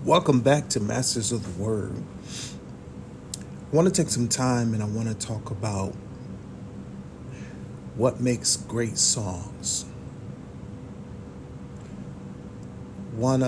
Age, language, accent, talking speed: 40-59, English, American, 105 wpm